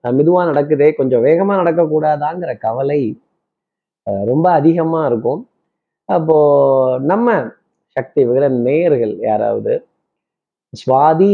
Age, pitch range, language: 20-39, 135-175 Hz, Tamil